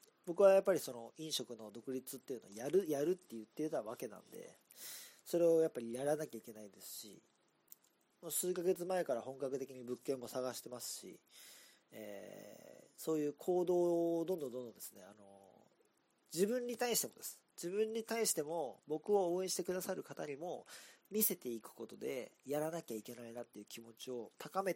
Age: 40-59